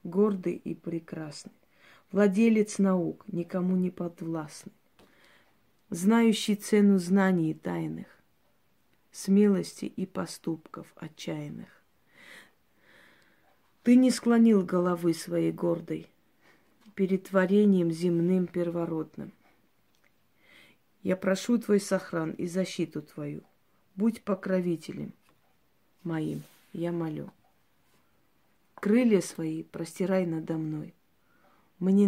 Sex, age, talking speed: female, 30-49, 80 wpm